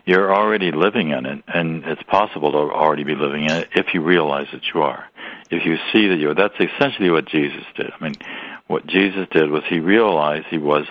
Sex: male